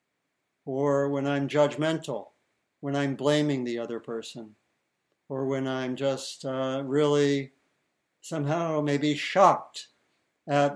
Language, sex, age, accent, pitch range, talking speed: English, male, 60-79, American, 135-155 Hz, 110 wpm